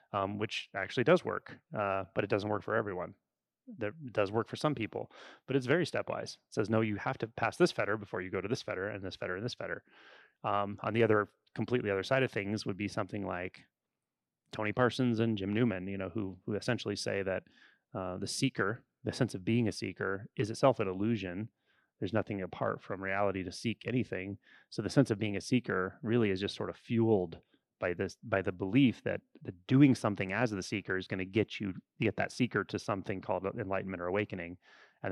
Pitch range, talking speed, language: 100-120 Hz, 220 wpm, English